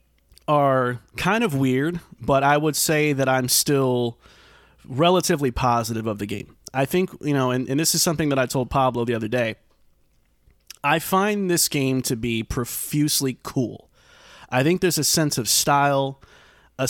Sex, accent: male, American